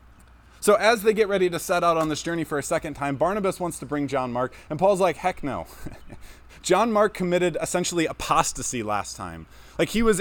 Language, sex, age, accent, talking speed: English, male, 20-39, American, 210 wpm